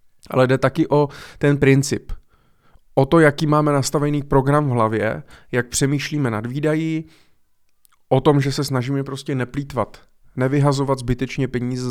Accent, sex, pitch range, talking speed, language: native, male, 115-140 Hz, 140 wpm, Czech